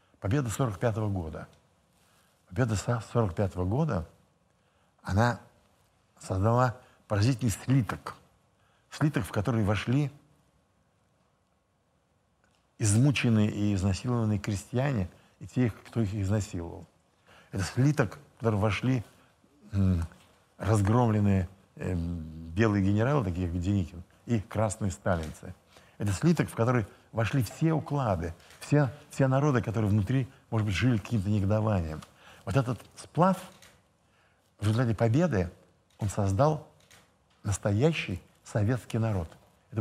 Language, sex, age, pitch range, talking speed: Russian, male, 60-79, 100-125 Hz, 100 wpm